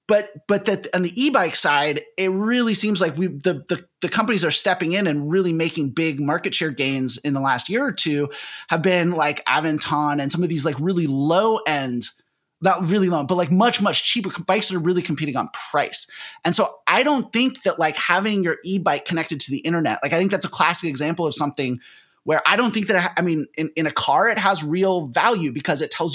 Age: 30-49